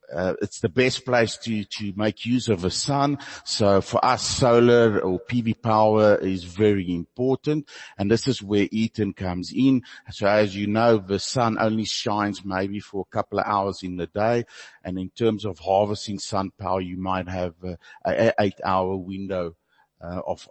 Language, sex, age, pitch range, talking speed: English, male, 50-69, 95-115 Hz, 180 wpm